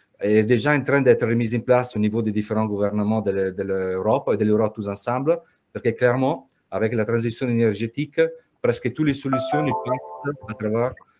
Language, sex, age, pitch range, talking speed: French, male, 40-59, 105-135 Hz, 190 wpm